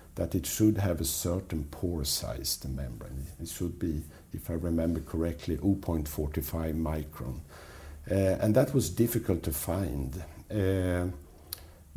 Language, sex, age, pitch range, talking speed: English, male, 60-79, 80-95 Hz, 135 wpm